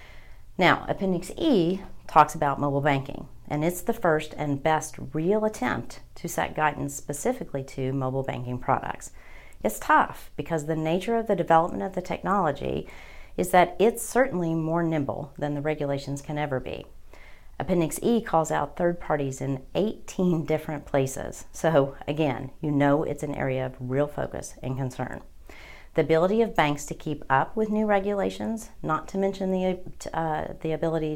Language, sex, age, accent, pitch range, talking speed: English, female, 40-59, American, 140-170 Hz, 160 wpm